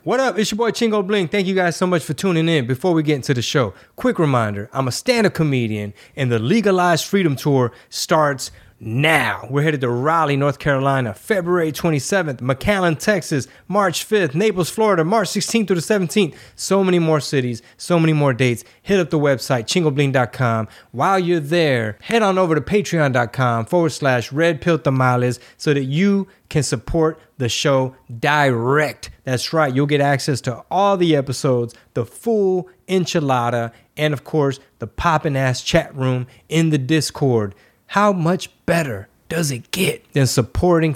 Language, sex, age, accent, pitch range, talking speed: English, male, 20-39, American, 125-165 Hz, 170 wpm